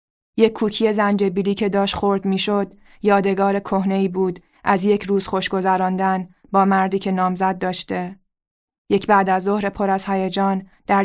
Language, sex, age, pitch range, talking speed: Persian, female, 20-39, 185-205 Hz, 145 wpm